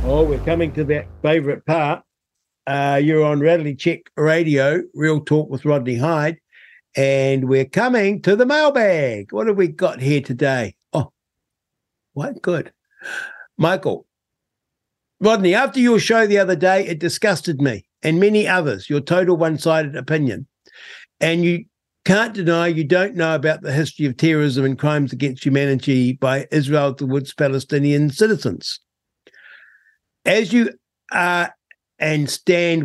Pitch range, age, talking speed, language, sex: 140-180 Hz, 60-79, 140 wpm, English, male